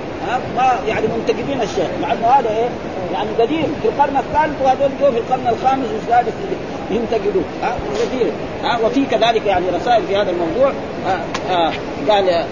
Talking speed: 145 wpm